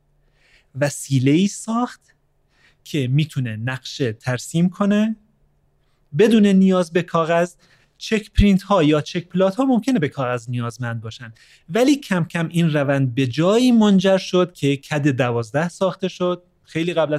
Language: Persian